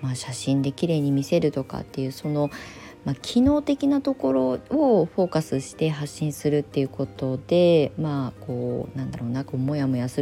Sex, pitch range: female, 135-210 Hz